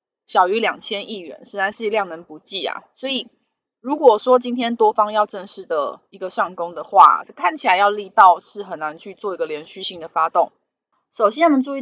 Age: 20-39